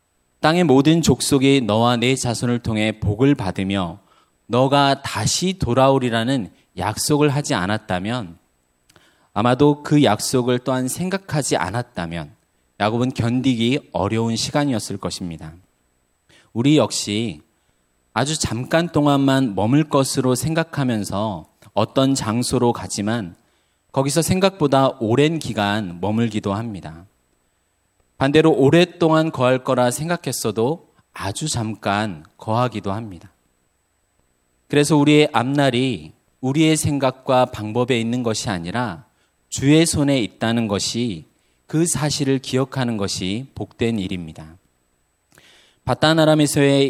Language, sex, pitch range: Korean, male, 105-140 Hz